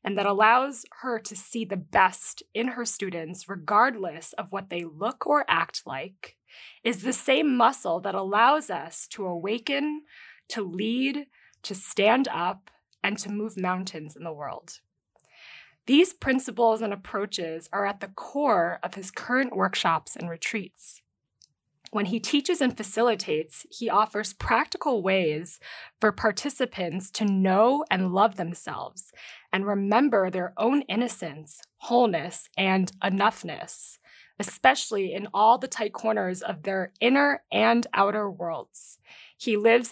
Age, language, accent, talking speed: 20-39, English, American, 140 wpm